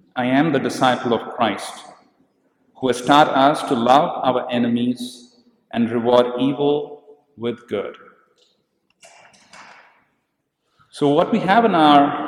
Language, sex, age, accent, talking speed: English, male, 50-69, Indian, 120 wpm